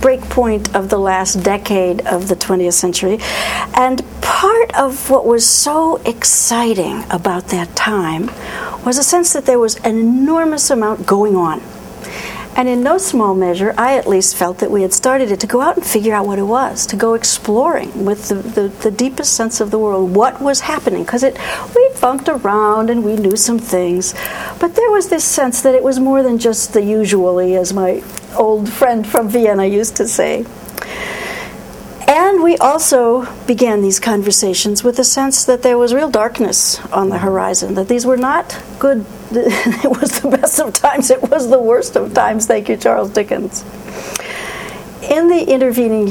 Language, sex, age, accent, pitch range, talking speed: English, female, 60-79, American, 200-270 Hz, 180 wpm